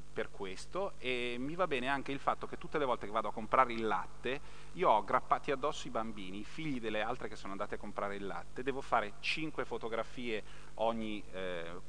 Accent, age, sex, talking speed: native, 30-49, male, 210 wpm